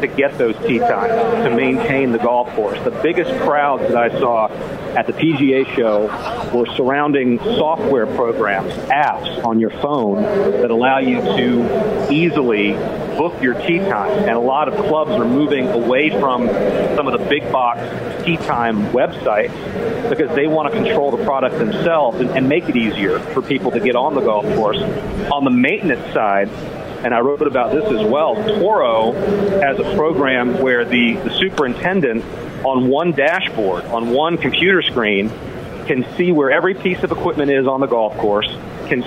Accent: American